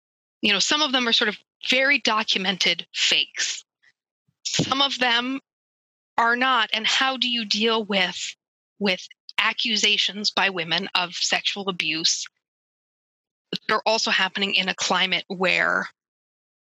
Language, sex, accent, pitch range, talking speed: English, female, American, 190-240 Hz, 130 wpm